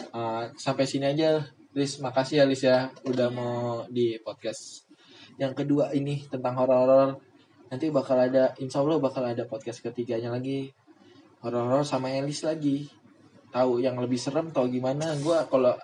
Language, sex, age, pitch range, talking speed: Indonesian, male, 20-39, 125-155 Hz, 150 wpm